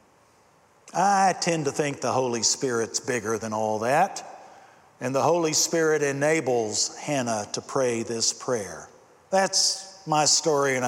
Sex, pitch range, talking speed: male, 130-190 Hz, 140 wpm